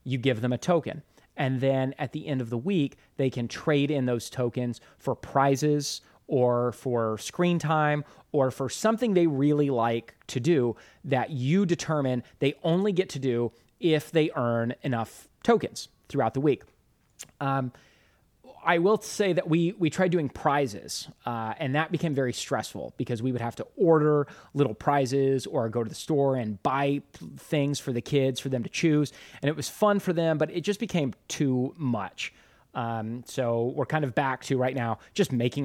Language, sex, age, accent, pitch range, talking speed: English, male, 30-49, American, 125-155 Hz, 185 wpm